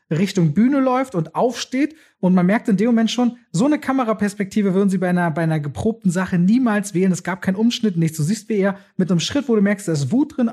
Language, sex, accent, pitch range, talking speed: German, male, German, 160-210 Hz, 245 wpm